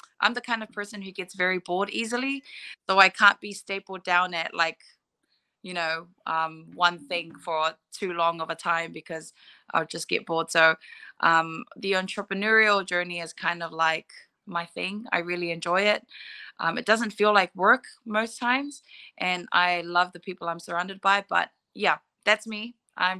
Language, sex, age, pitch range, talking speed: English, female, 20-39, 175-210 Hz, 180 wpm